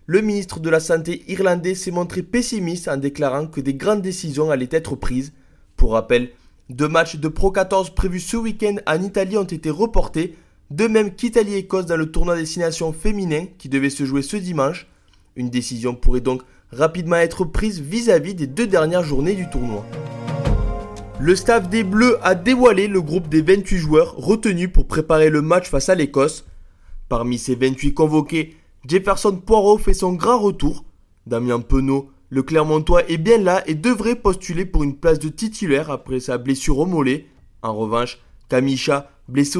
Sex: male